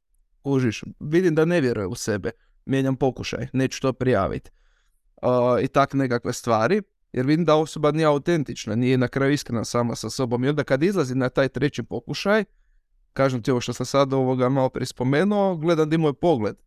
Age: 20-39